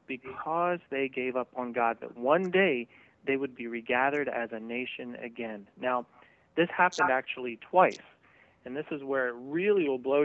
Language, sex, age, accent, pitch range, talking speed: English, male, 30-49, American, 120-140 Hz, 175 wpm